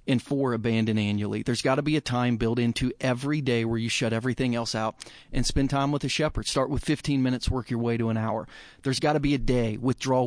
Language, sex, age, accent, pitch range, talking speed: English, male, 30-49, American, 120-150 Hz, 250 wpm